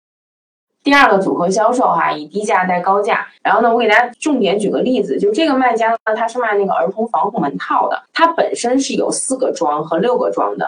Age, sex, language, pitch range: 20-39, female, Chinese, 180-255 Hz